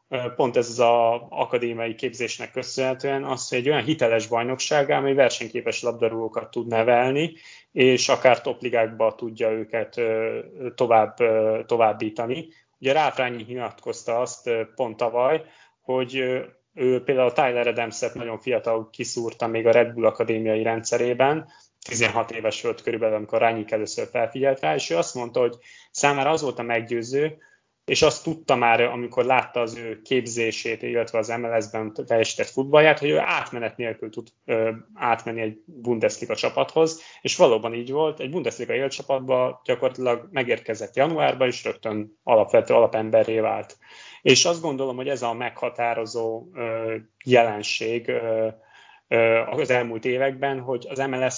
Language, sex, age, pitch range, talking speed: Hungarian, male, 20-39, 115-130 Hz, 135 wpm